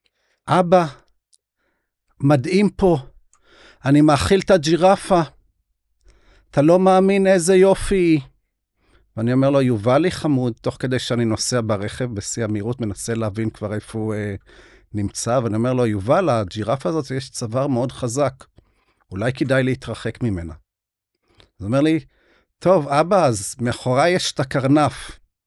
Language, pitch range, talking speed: Hebrew, 110-155 Hz, 135 wpm